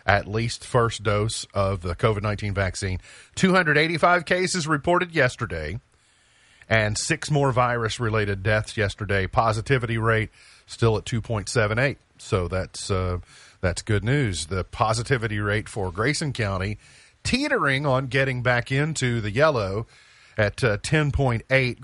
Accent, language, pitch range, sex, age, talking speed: American, English, 100-125 Hz, male, 40-59, 125 wpm